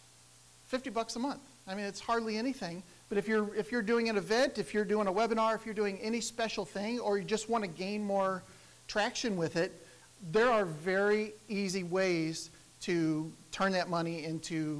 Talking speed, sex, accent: 195 wpm, male, American